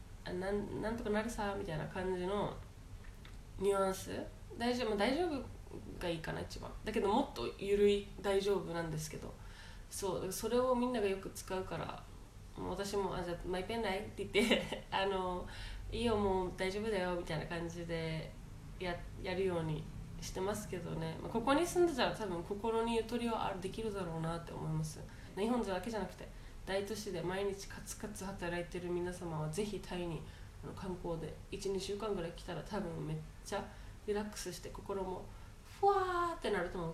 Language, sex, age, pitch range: Japanese, female, 20-39, 145-210 Hz